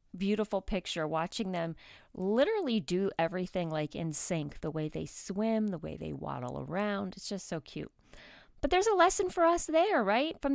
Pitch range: 175-225 Hz